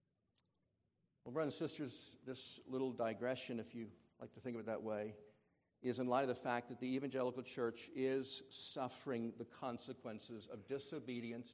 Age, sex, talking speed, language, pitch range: 60-79, male, 165 wpm, English, 105-130 Hz